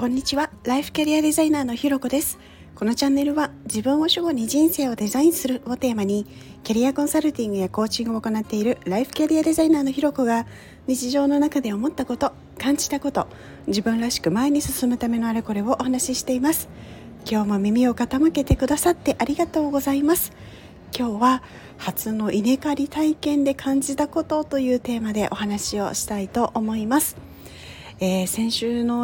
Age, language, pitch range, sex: 40-59, Japanese, 215-280 Hz, female